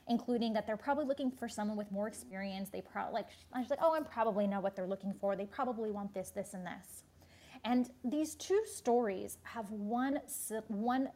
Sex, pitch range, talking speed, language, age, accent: female, 200-260 Hz, 205 wpm, English, 20-39, American